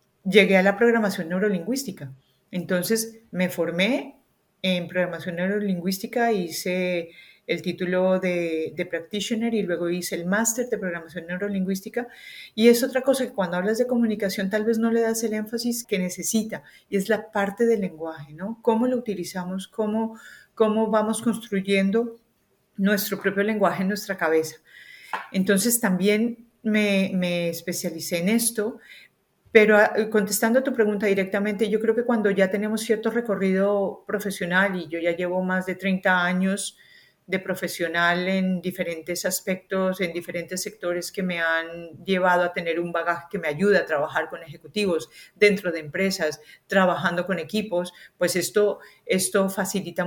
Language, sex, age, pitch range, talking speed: English, female, 40-59, 180-220 Hz, 150 wpm